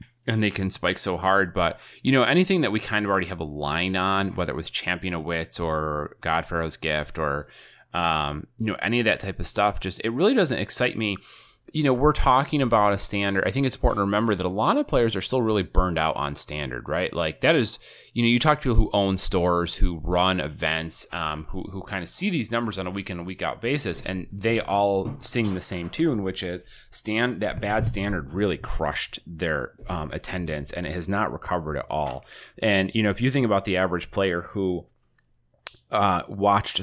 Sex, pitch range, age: male, 90-110 Hz, 30-49